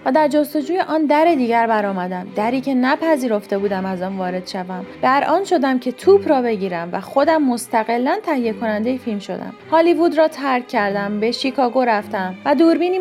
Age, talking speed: 30-49, 175 wpm